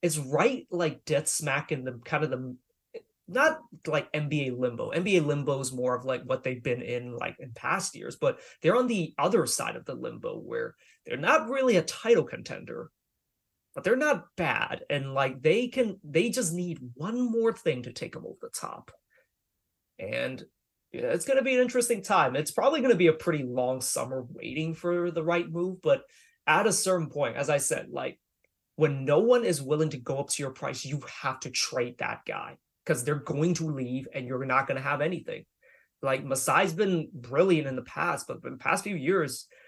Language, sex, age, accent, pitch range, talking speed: English, male, 30-49, American, 140-220 Hz, 205 wpm